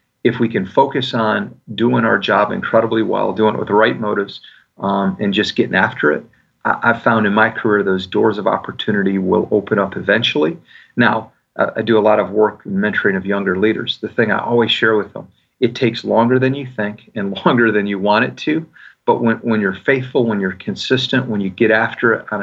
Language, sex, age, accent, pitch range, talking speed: English, male, 40-59, American, 100-120 Hz, 220 wpm